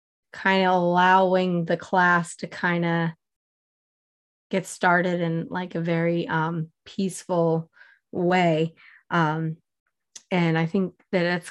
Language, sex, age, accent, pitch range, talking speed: English, female, 20-39, American, 170-200 Hz, 120 wpm